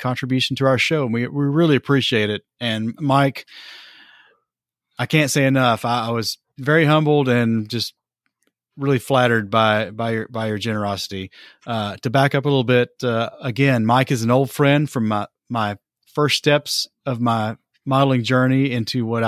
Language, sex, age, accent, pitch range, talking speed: English, male, 30-49, American, 110-135 Hz, 170 wpm